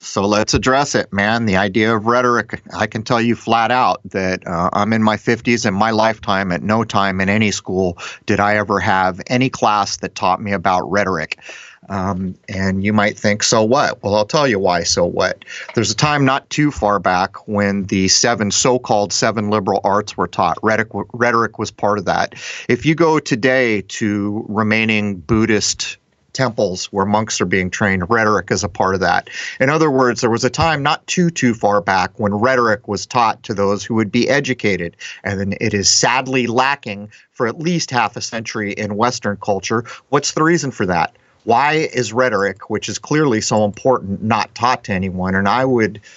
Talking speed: 195 wpm